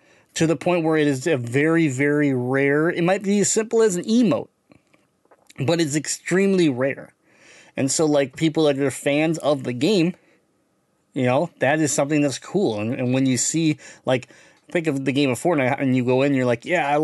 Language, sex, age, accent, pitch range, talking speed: English, male, 30-49, American, 125-155 Hz, 210 wpm